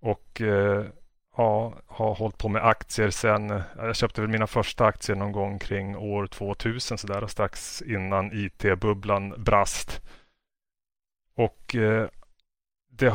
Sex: male